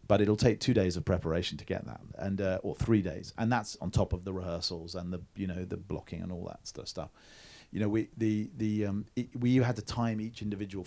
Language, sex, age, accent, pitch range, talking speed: English, male, 40-59, British, 95-115 Hz, 260 wpm